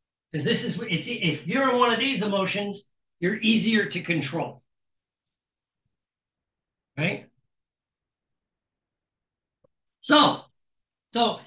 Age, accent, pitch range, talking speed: 60-79, American, 170-230 Hz, 95 wpm